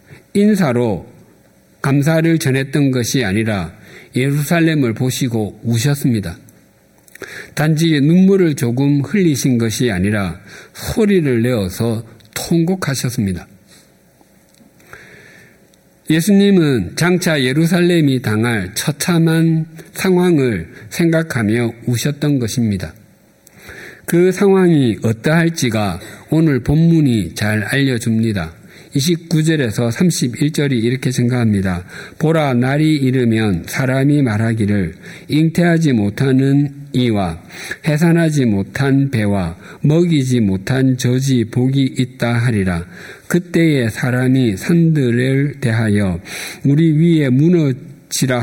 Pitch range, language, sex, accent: 115-155 Hz, Korean, male, native